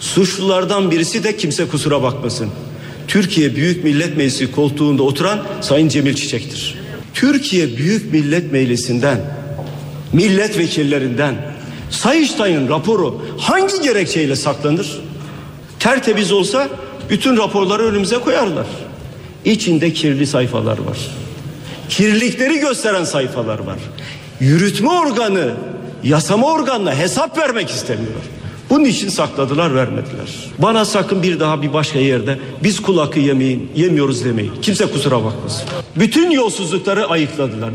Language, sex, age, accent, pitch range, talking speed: Turkish, male, 50-69, native, 140-205 Hz, 110 wpm